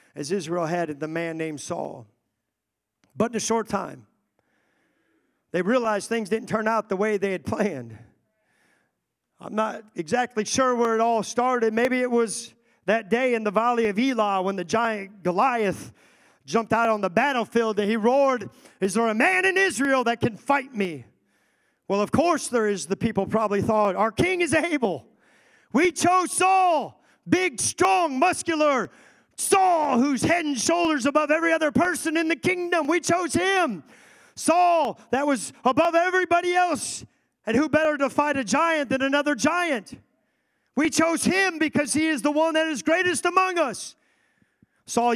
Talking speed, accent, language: 170 wpm, American, English